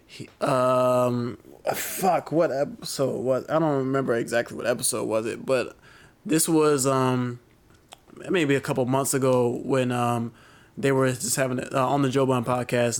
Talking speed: 160 wpm